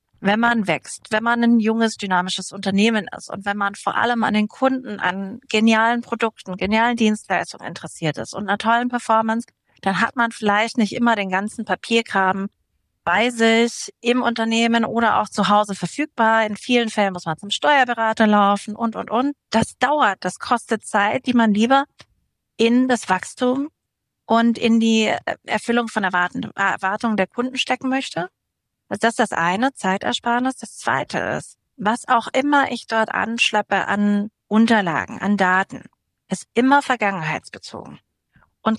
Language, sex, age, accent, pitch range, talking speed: German, female, 40-59, German, 200-235 Hz, 160 wpm